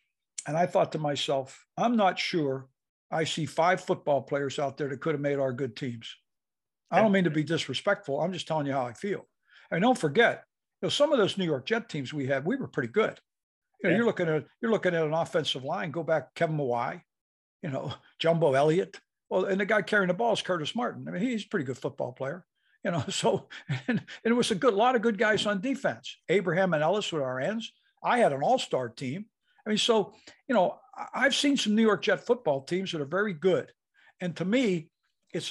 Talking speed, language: 235 wpm, English